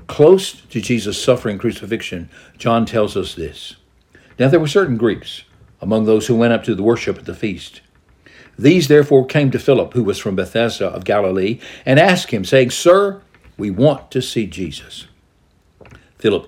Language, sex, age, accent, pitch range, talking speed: English, male, 60-79, American, 110-135 Hz, 170 wpm